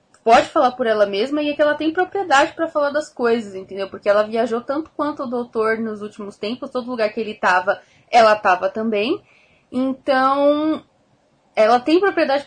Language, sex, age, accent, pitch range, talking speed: Portuguese, female, 10-29, Brazilian, 225-300 Hz, 185 wpm